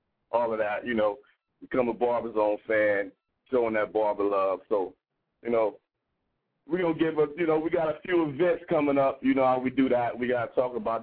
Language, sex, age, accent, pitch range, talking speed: English, male, 40-59, American, 110-130 Hz, 230 wpm